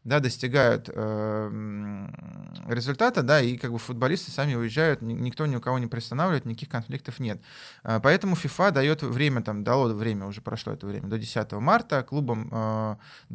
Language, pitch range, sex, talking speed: Russian, 115-145 Hz, male, 160 wpm